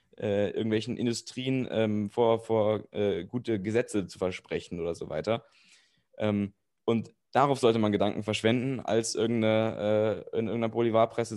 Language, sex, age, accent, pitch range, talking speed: German, male, 10-29, German, 100-115 Hz, 135 wpm